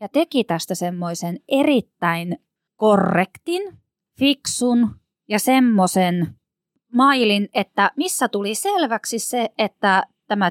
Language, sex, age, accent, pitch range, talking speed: Finnish, female, 20-39, native, 180-260 Hz, 95 wpm